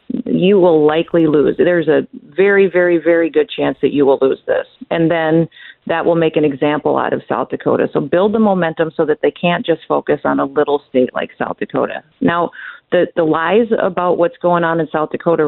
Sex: female